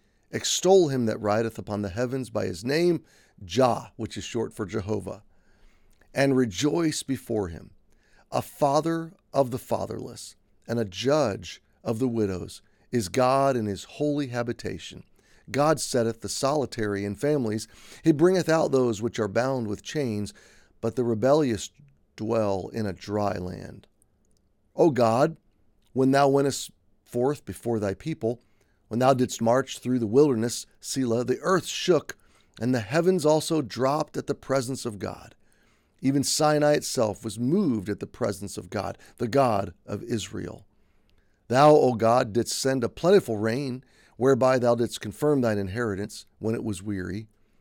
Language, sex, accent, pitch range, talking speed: English, male, American, 105-135 Hz, 155 wpm